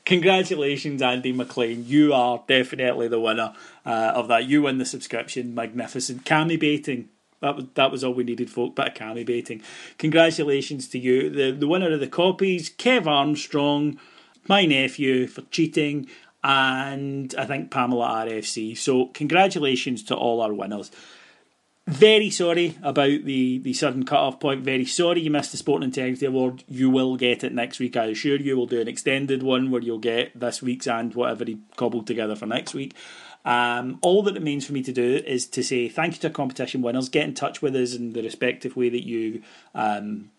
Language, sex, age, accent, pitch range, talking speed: English, male, 30-49, British, 120-145 Hz, 190 wpm